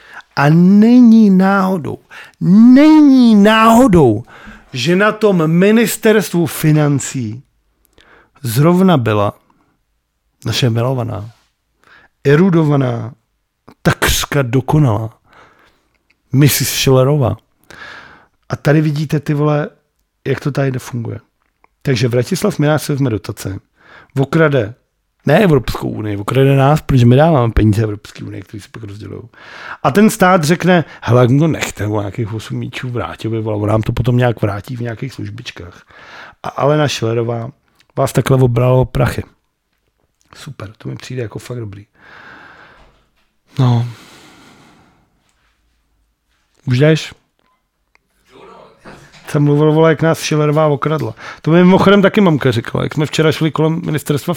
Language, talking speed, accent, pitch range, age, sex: Czech, 120 wpm, native, 115-155 Hz, 50-69, male